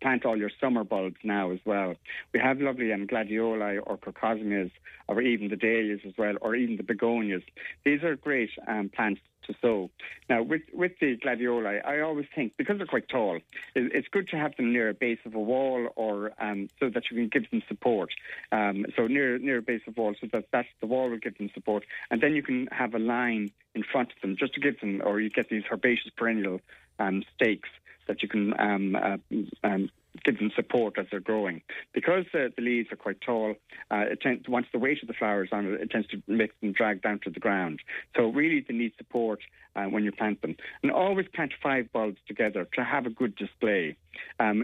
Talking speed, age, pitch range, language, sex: 225 wpm, 60-79, 105-125 Hz, English, male